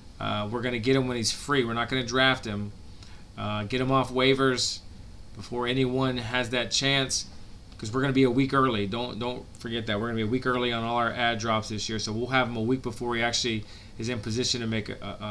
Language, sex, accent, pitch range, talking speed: English, male, American, 105-130 Hz, 260 wpm